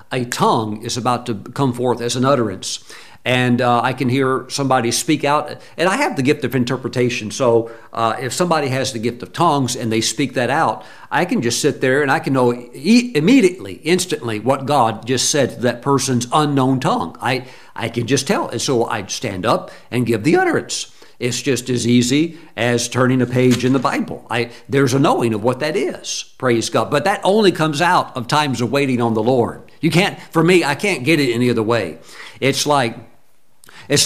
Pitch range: 120-145 Hz